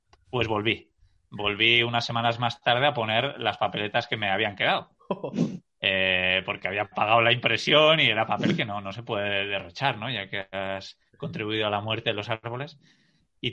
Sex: male